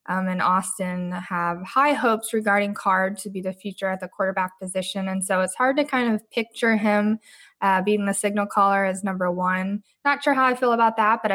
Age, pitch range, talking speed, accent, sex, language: 10-29, 185-220 Hz, 215 wpm, American, female, English